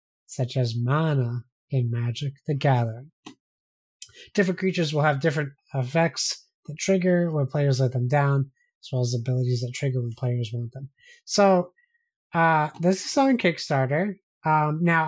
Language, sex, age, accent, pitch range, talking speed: English, male, 20-39, American, 130-170 Hz, 150 wpm